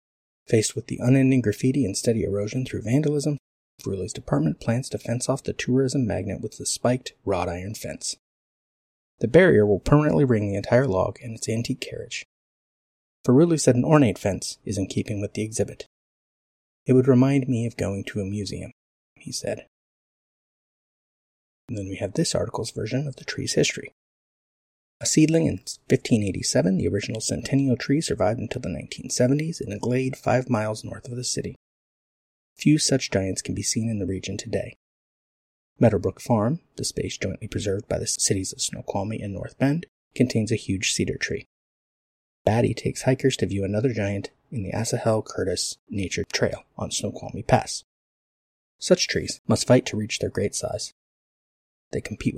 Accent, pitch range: American, 100-130 Hz